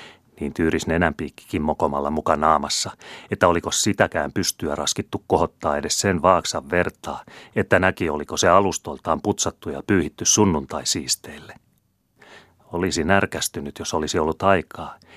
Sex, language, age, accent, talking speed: male, Finnish, 30-49, native, 125 wpm